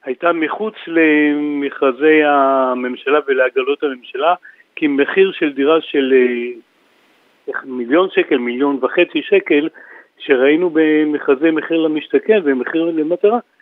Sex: male